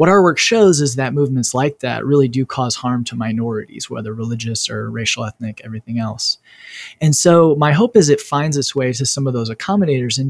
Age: 20-39